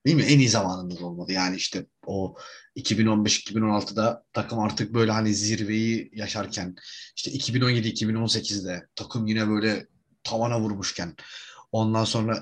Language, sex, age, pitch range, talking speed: Turkish, male, 30-49, 100-135 Hz, 120 wpm